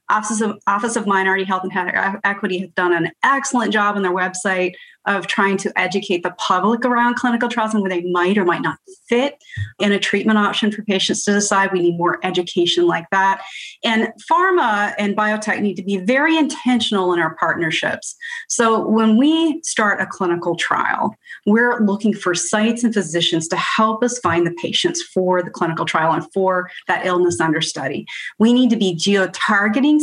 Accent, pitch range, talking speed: American, 175-220 Hz, 185 wpm